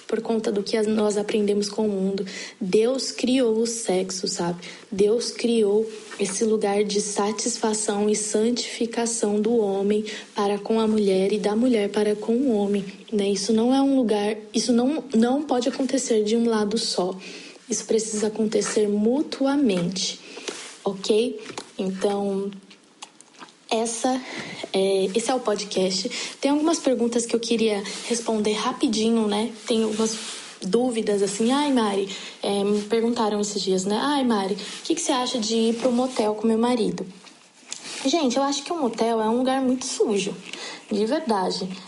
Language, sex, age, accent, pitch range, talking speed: Portuguese, female, 20-39, Brazilian, 205-235 Hz, 155 wpm